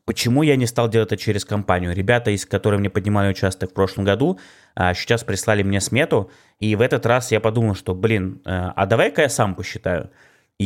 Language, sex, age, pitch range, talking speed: Russian, male, 20-39, 95-115 Hz, 195 wpm